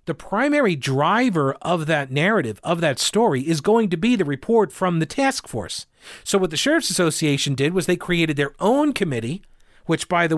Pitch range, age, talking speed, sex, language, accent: 145-195 Hz, 40-59, 195 wpm, male, English, American